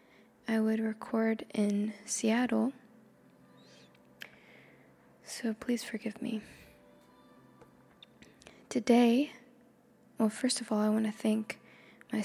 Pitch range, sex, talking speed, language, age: 215-245 Hz, female, 95 wpm, English, 20-39